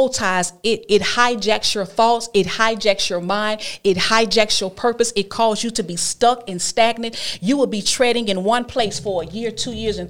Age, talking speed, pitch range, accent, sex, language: 40-59, 210 wpm, 180-220 Hz, American, female, English